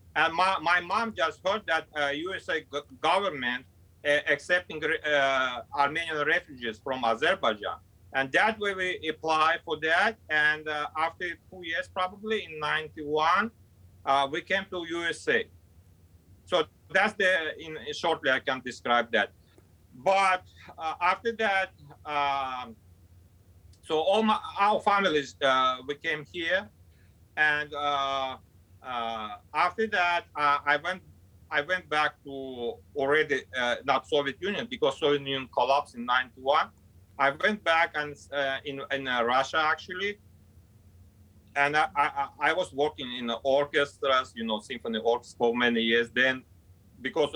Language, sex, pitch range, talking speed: English, male, 115-160 Hz, 140 wpm